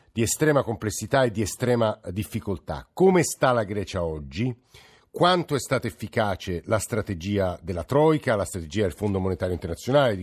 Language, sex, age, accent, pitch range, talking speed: Italian, male, 50-69, native, 95-125 Hz, 155 wpm